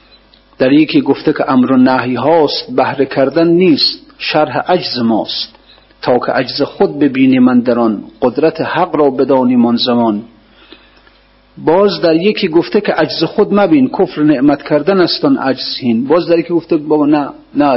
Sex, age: male, 40-59